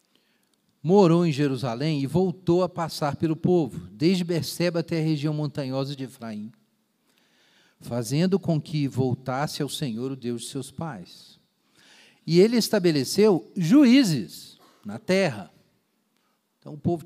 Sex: male